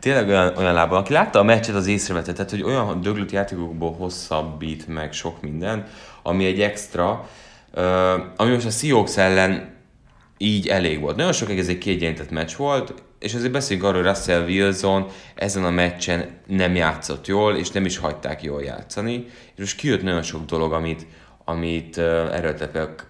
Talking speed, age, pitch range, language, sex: 170 wpm, 30-49, 80-105 Hz, Hungarian, male